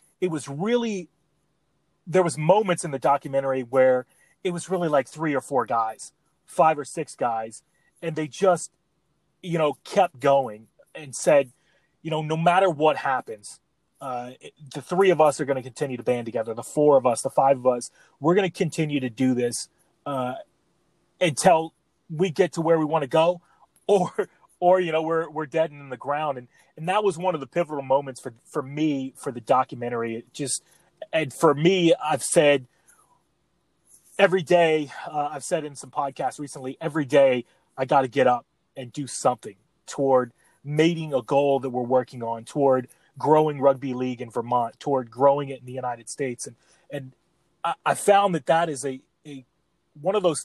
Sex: male